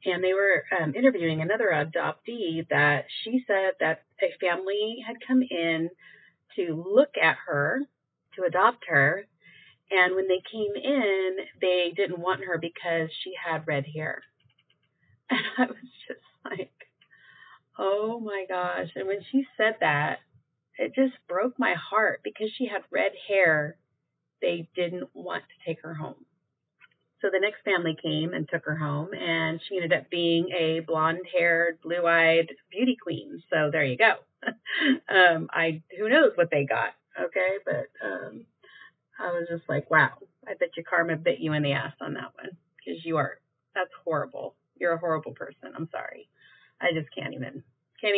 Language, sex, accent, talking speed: English, female, American, 170 wpm